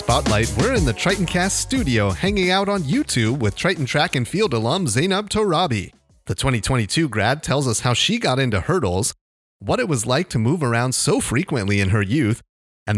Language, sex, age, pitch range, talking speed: English, male, 30-49, 100-145 Hz, 190 wpm